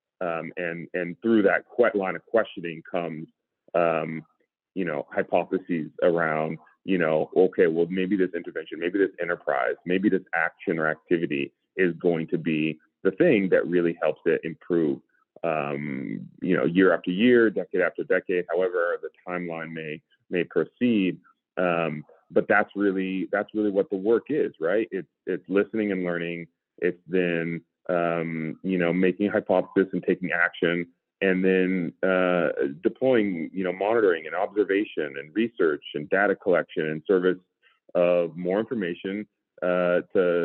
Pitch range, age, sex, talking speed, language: 85-100 Hz, 30-49, male, 150 wpm, English